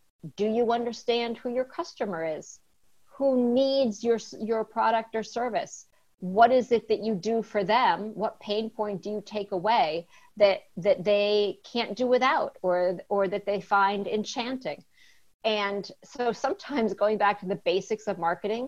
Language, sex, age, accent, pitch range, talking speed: English, female, 50-69, American, 190-235 Hz, 165 wpm